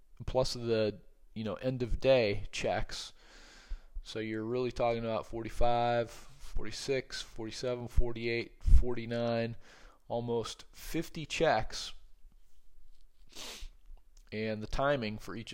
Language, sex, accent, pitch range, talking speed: English, male, American, 100-125 Hz, 105 wpm